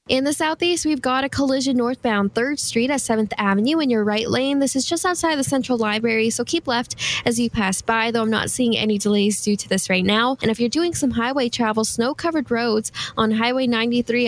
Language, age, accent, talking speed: English, 10-29, American, 225 wpm